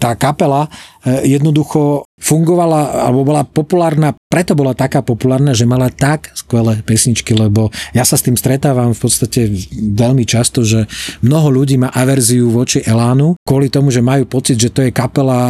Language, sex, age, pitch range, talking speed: Slovak, male, 40-59, 115-135 Hz, 165 wpm